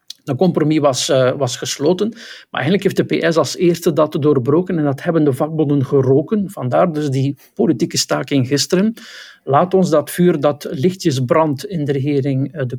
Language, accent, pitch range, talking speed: Dutch, Dutch, 140-165 Hz, 175 wpm